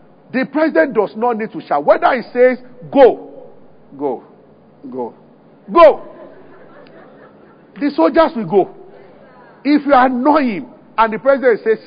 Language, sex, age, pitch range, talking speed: English, male, 50-69, 225-285 Hz, 130 wpm